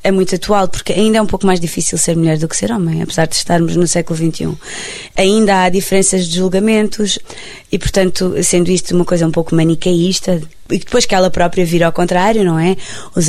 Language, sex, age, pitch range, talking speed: Portuguese, female, 20-39, 170-210 Hz, 210 wpm